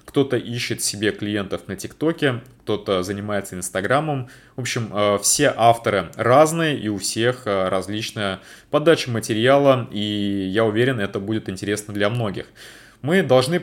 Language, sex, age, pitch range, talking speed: Russian, male, 30-49, 100-135 Hz, 130 wpm